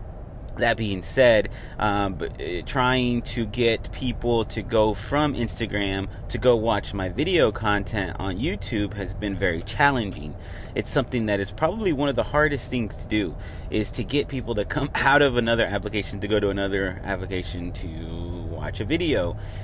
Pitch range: 100-120 Hz